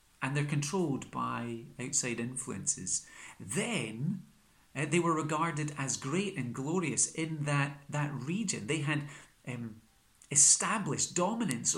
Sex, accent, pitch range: male, British, 115-165 Hz